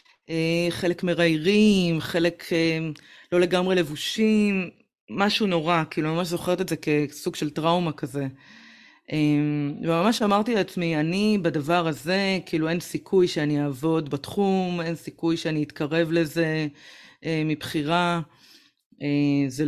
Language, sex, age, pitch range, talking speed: Hebrew, female, 30-49, 155-185 Hz, 110 wpm